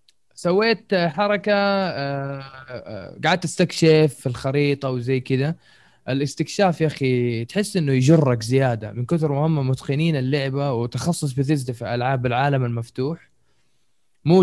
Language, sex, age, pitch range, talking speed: Arabic, male, 20-39, 130-170 Hz, 110 wpm